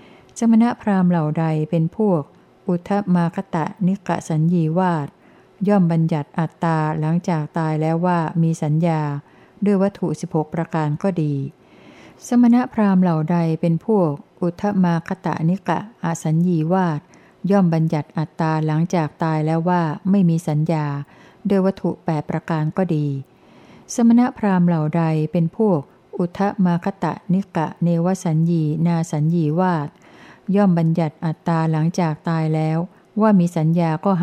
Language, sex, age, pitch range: Thai, female, 60-79, 160-190 Hz